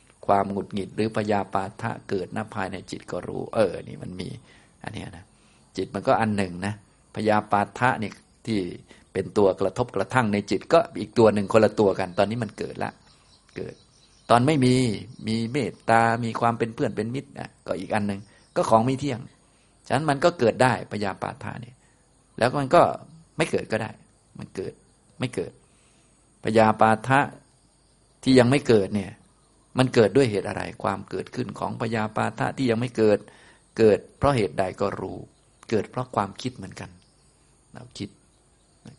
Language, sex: Thai, male